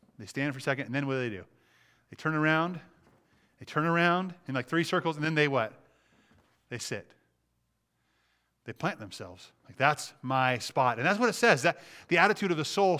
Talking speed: 205 wpm